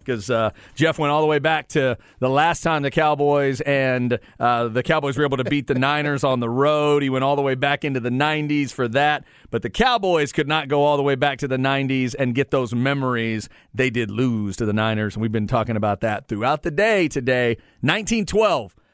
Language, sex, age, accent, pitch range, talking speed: English, male, 40-59, American, 125-155 Hz, 225 wpm